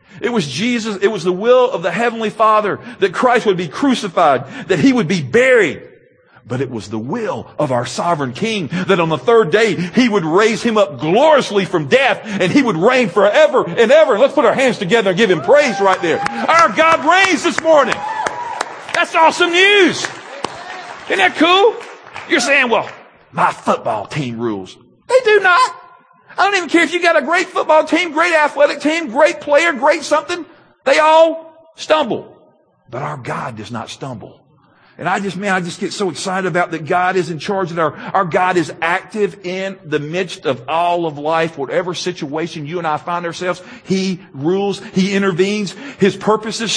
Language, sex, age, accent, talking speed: English, male, 50-69, American, 190 wpm